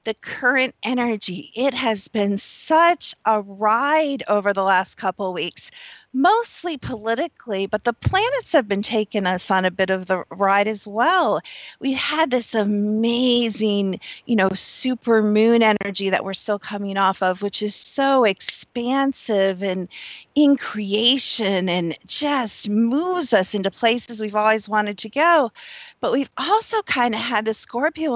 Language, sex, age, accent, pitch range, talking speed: English, female, 40-59, American, 200-260 Hz, 155 wpm